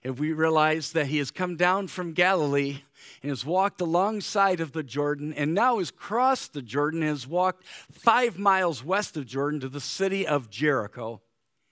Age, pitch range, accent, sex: 50-69, 130-180 Hz, American, male